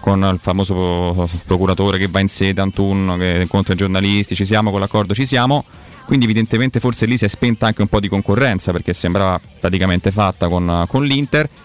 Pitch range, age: 95-115 Hz, 30-49